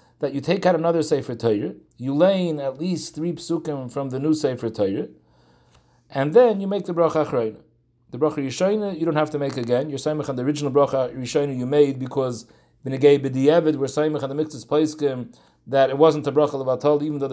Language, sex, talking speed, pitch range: English, male, 200 wpm, 135-170 Hz